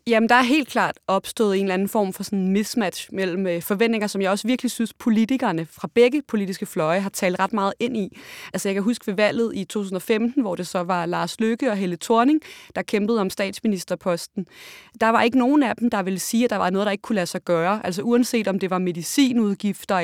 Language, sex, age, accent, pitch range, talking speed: Danish, female, 20-39, native, 185-230 Hz, 230 wpm